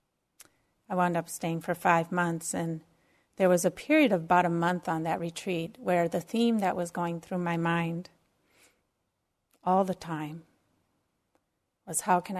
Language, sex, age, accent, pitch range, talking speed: English, female, 30-49, American, 170-205 Hz, 165 wpm